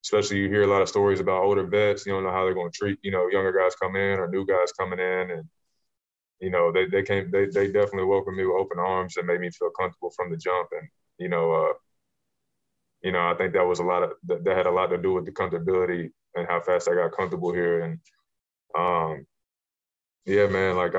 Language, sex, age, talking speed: English, male, 20-39, 245 wpm